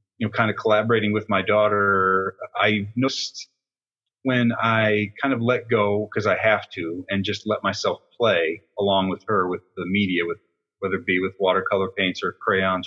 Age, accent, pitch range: 30-49, American, 100-115 Hz